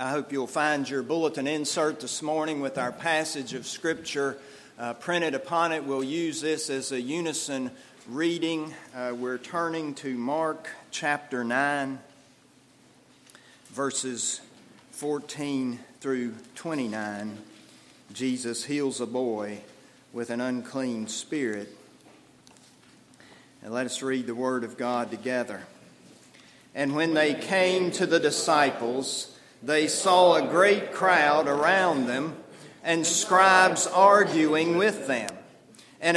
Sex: male